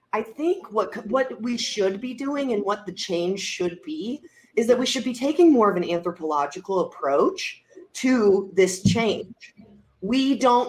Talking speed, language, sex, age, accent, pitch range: 170 wpm, English, female, 30-49, American, 190-260 Hz